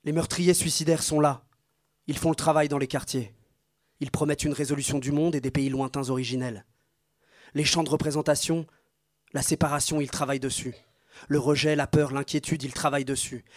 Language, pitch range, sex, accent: French, 140-160 Hz, male, French